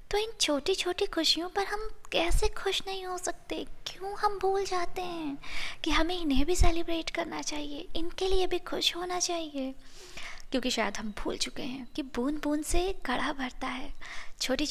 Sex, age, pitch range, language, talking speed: female, 20-39, 270-360 Hz, Hindi, 180 wpm